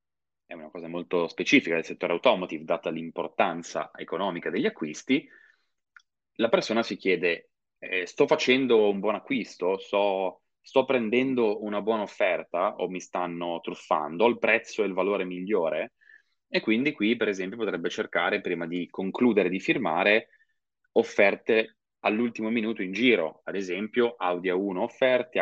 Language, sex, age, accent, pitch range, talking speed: Italian, male, 20-39, native, 90-125 Hz, 145 wpm